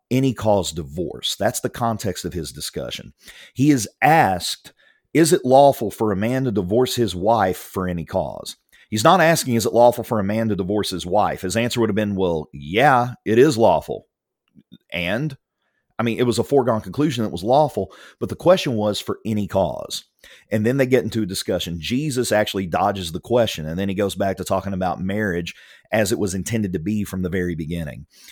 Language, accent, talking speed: English, American, 205 wpm